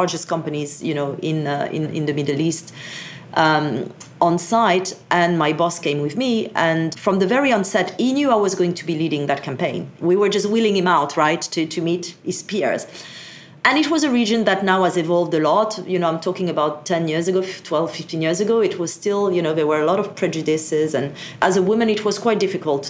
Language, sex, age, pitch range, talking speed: English, female, 40-59, 165-215 Hz, 235 wpm